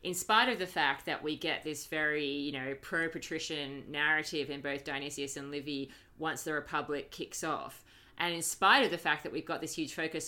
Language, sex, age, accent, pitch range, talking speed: English, female, 30-49, Australian, 145-185 Hz, 210 wpm